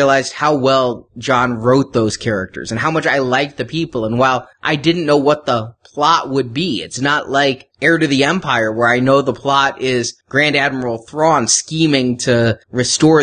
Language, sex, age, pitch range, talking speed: English, male, 20-39, 120-150 Hz, 195 wpm